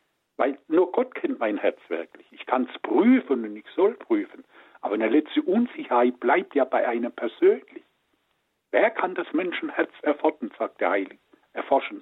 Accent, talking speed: German, 145 wpm